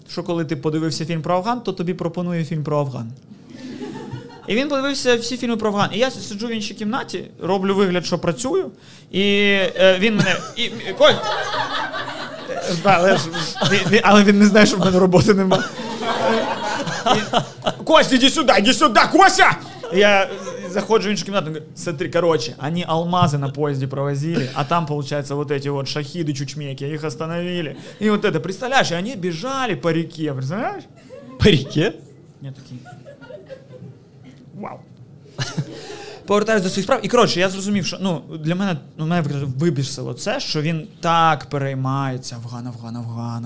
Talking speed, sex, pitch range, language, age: 150 wpm, male, 145-200 Hz, Ukrainian, 30-49